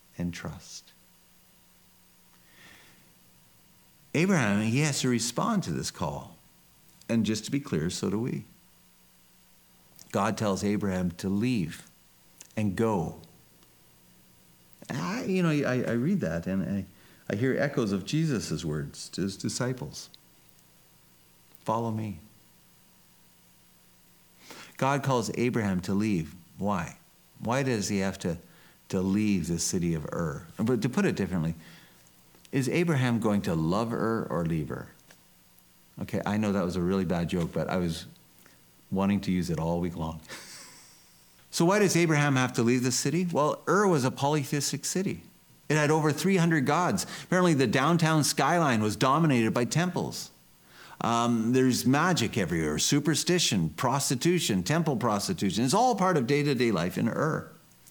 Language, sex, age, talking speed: English, male, 50-69, 145 wpm